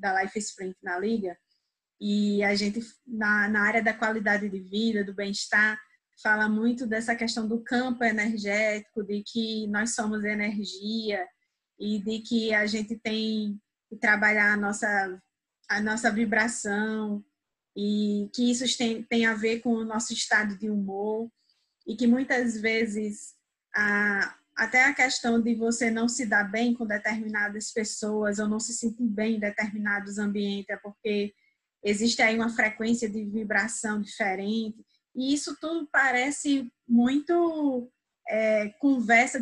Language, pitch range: Portuguese, 210-240 Hz